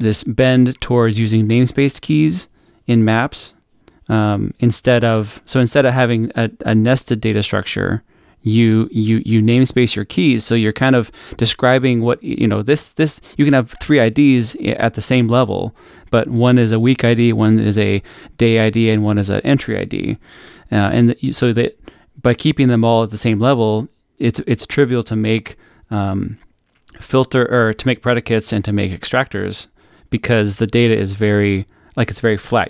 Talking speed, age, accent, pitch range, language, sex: 180 wpm, 20-39, American, 110-125 Hz, English, male